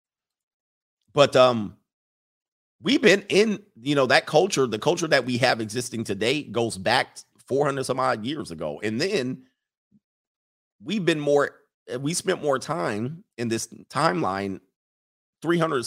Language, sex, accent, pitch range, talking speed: English, male, American, 110-150 Hz, 135 wpm